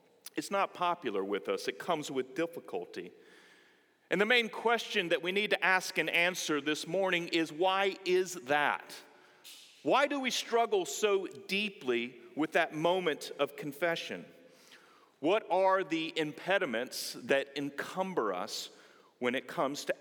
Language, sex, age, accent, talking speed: English, male, 40-59, American, 145 wpm